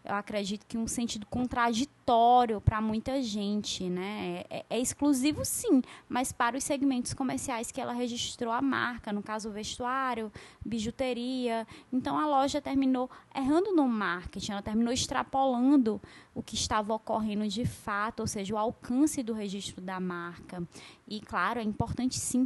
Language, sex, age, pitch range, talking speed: Portuguese, female, 20-39, 200-255 Hz, 155 wpm